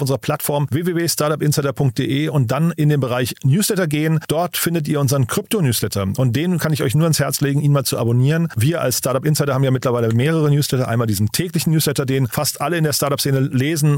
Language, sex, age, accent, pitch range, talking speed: German, male, 40-59, German, 130-155 Hz, 200 wpm